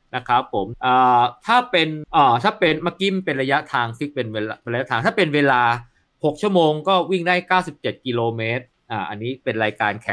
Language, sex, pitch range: Thai, male, 120-160 Hz